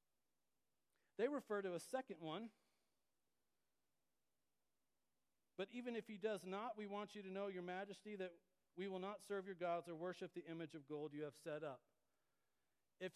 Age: 40-59